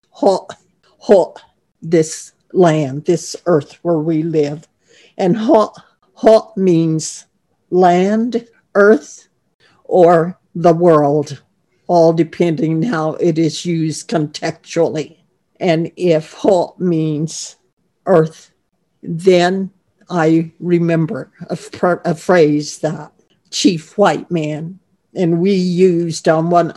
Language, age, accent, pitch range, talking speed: English, 60-79, American, 160-185 Hz, 100 wpm